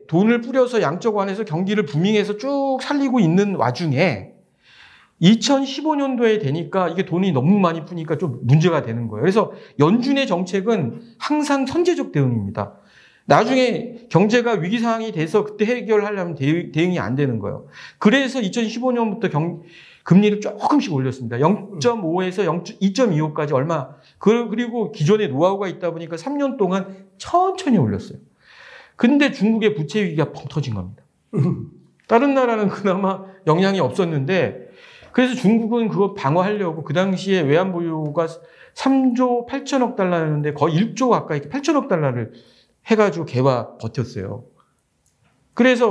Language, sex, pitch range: Korean, male, 155-225 Hz